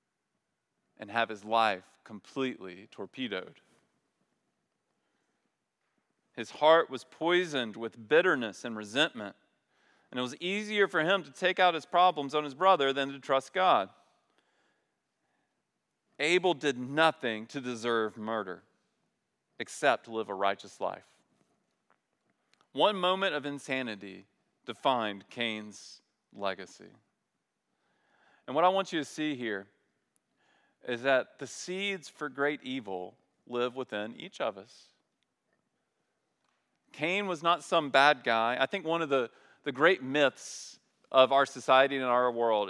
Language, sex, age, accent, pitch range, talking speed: English, male, 40-59, American, 115-165 Hz, 130 wpm